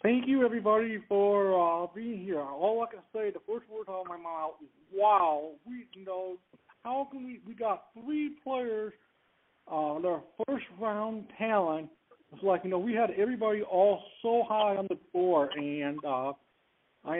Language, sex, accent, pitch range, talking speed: English, male, American, 180-225 Hz, 175 wpm